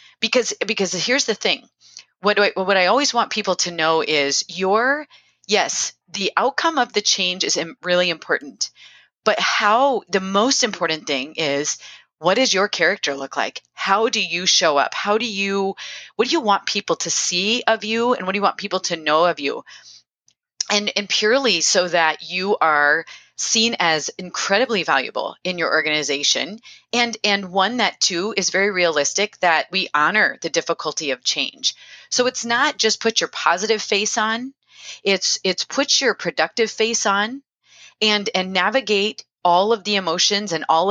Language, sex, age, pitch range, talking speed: English, female, 30-49, 175-220 Hz, 175 wpm